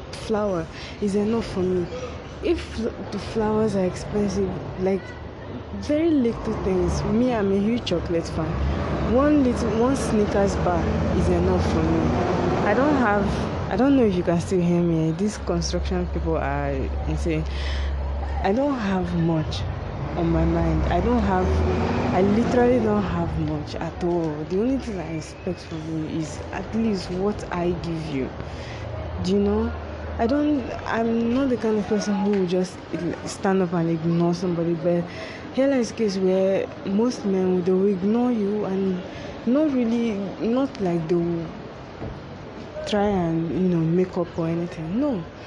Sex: female